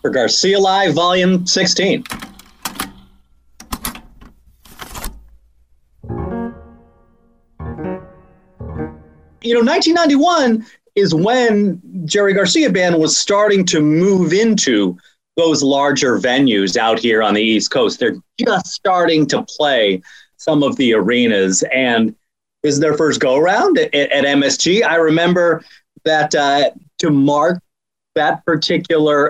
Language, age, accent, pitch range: English, 30-49, American, 135-200 Hz